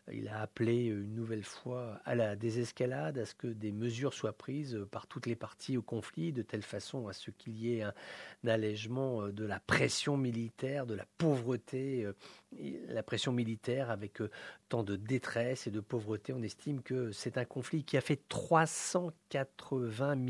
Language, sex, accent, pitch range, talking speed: English, male, French, 110-130 Hz, 175 wpm